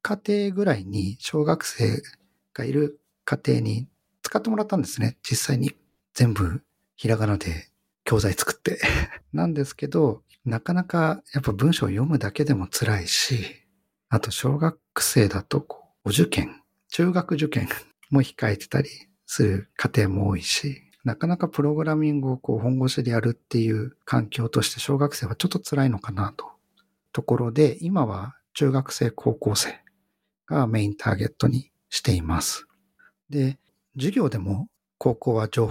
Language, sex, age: Japanese, male, 50-69